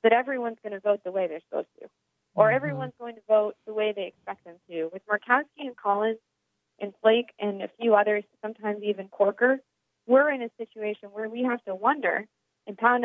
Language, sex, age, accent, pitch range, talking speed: English, female, 30-49, American, 195-230 Hz, 205 wpm